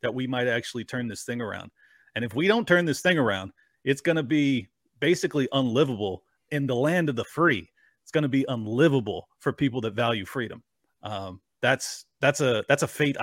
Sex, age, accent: male, 30-49, American